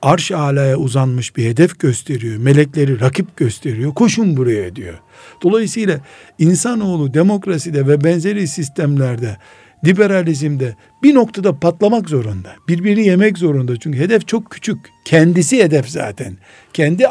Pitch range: 135-185 Hz